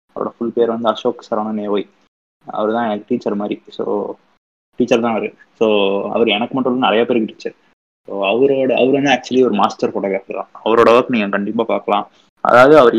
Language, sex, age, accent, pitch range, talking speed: Tamil, male, 20-39, native, 115-145 Hz, 170 wpm